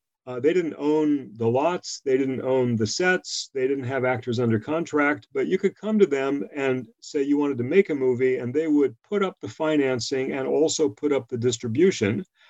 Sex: male